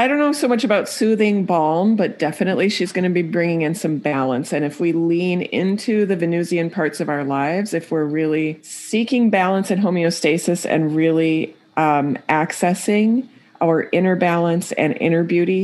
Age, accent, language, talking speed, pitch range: 40-59, American, English, 175 wpm, 155-185 Hz